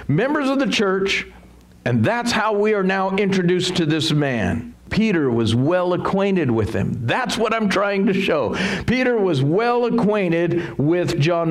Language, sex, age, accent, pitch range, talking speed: English, male, 50-69, American, 145-205 Hz, 165 wpm